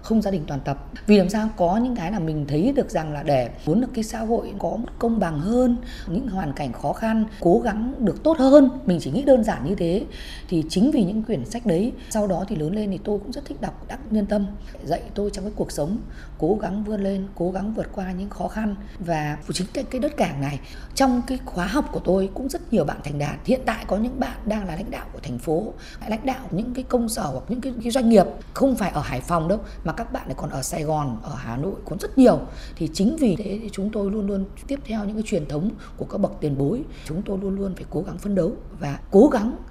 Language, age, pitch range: Vietnamese, 20-39, 160-225 Hz